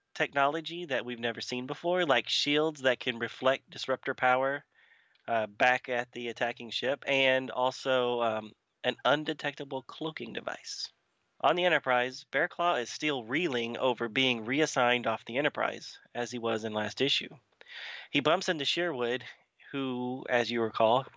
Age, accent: 30-49, American